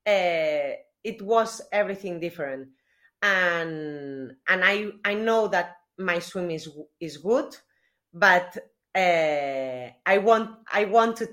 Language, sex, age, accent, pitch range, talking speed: English, female, 30-49, Spanish, 165-215 Hz, 115 wpm